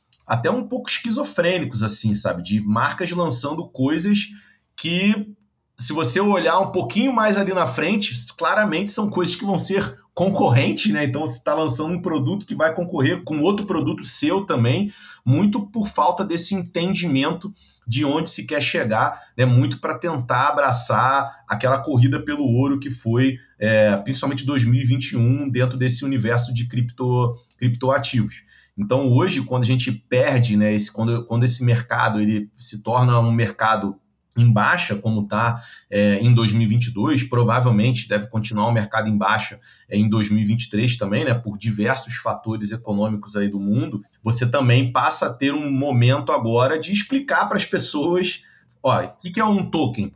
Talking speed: 160 wpm